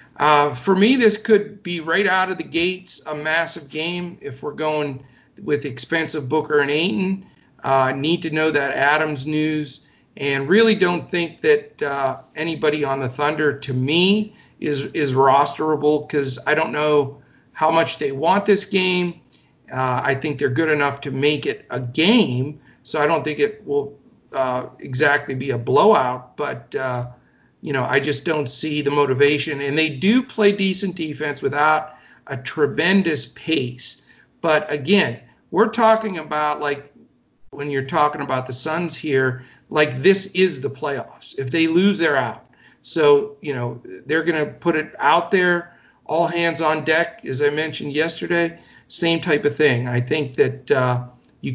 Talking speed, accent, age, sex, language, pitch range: 170 wpm, American, 50-69, male, English, 140-175 Hz